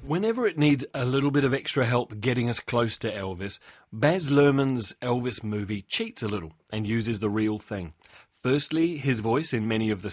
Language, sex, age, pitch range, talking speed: English, male, 30-49, 105-140 Hz, 195 wpm